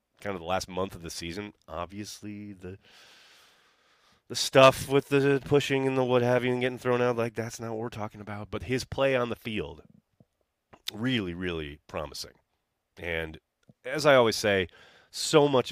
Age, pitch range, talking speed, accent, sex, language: 30-49, 80-125 Hz, 180 wpm, American, male, English